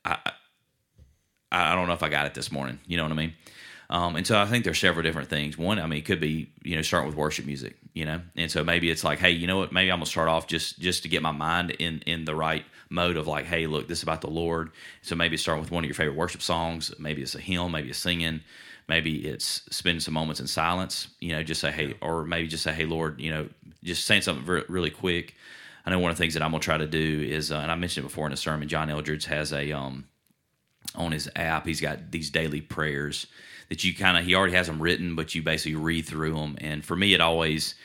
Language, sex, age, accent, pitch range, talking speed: English, male, 30-49, American, 75-85 Hz, 275 wpm